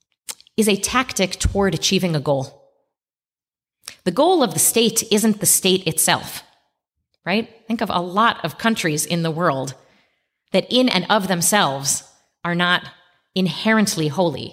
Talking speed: 145 wpm